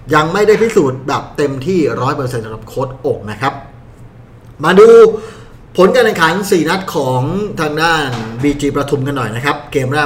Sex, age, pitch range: male, 20-39, 125-165 Hz